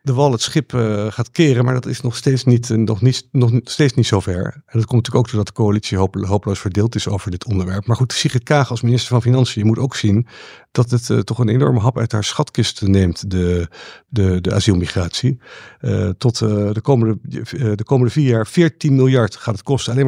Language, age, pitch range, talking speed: Dutch, 50-69, 110-135 Hz, 225 wpm